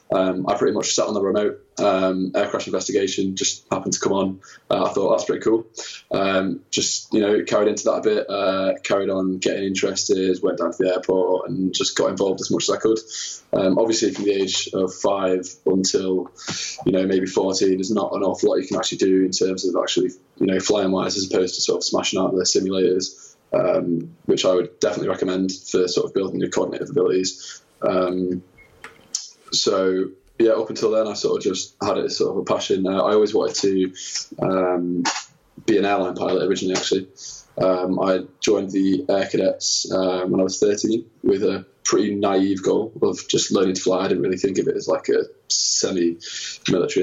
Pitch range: 90-100 Hz